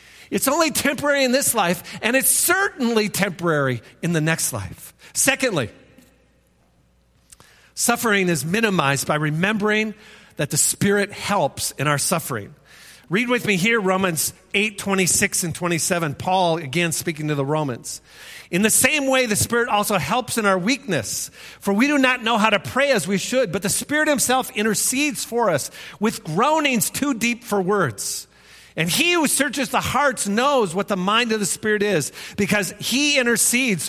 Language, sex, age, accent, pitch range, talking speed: English, male, 50-69, American, 175-250 Hz, 165 wpm